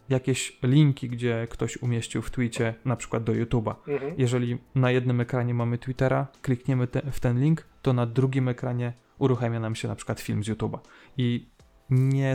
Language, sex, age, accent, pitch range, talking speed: Polish, male, 20-39, native, 115-135 Hz, 175 wpm